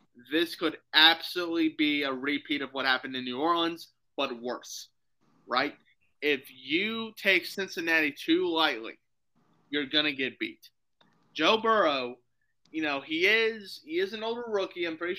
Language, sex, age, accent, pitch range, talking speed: English, male, 20-39, American, 135-190 Hz, 150 wpm